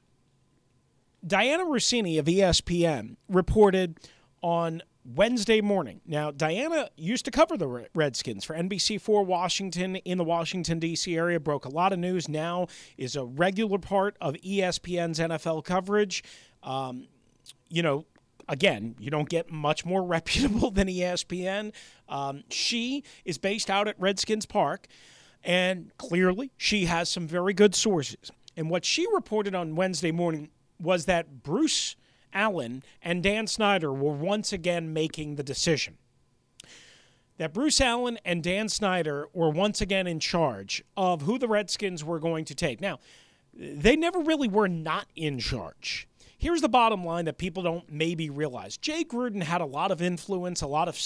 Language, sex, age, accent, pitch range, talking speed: English, male, 40-59, American, 155-205 Hz, 155 wpm